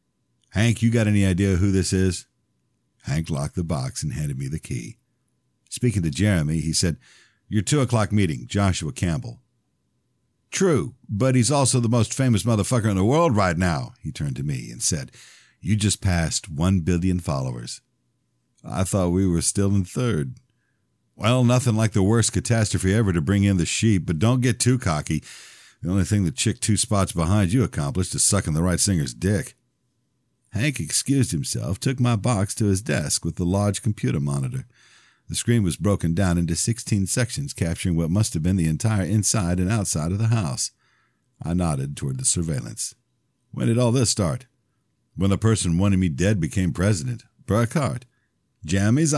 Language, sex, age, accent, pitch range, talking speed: English, male, 50-69, American, 90-120 Hz, 180 wpm